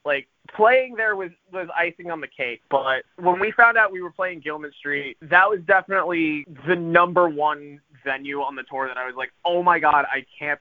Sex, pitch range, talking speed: male, 135-170 Hz, 215 wpm